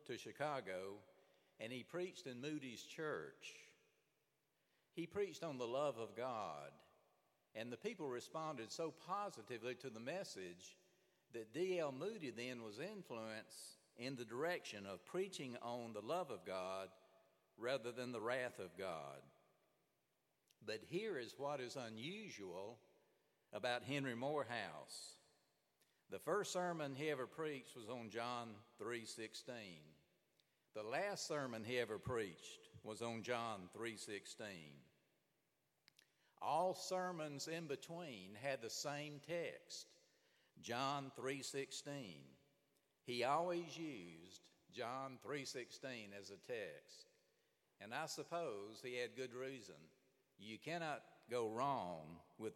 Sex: male